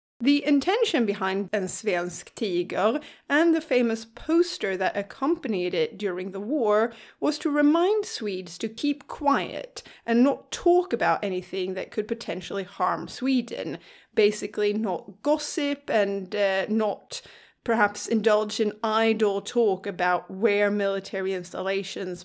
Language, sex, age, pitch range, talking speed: English, female, 30-49, 195-265 Hz, 130 wpm